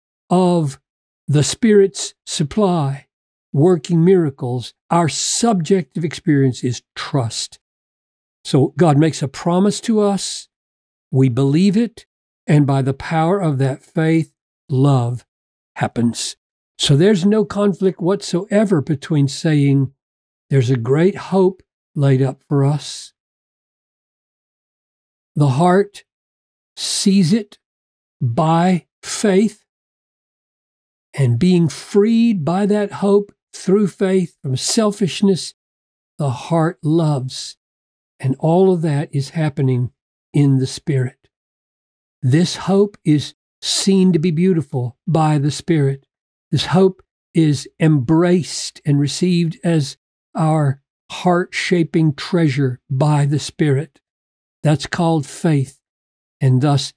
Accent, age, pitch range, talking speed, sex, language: American, 50-69, 135-180 Hz, 105 wpm, male, English